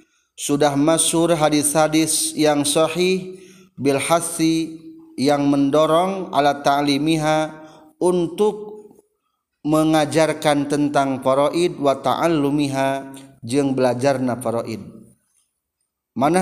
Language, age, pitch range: Indonesian, 40-59, 135-175 Hz